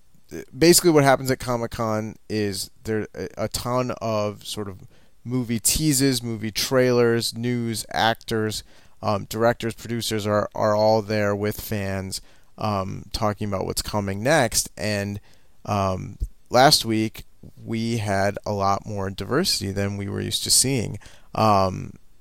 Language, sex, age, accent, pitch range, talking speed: English, male, 30-49, American, 100-120 Hz, 135 wpm